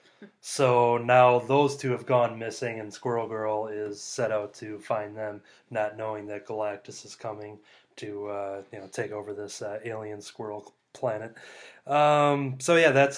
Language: English